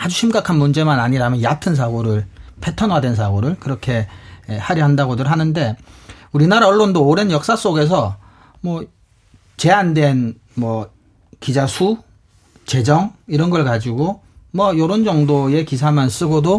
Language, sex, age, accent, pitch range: Korean, male, 40-59, native, 120-185 Hz